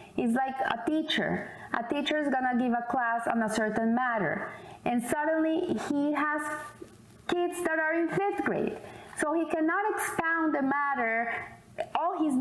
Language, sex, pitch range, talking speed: English, female, 215-295 Hz, 160 wpm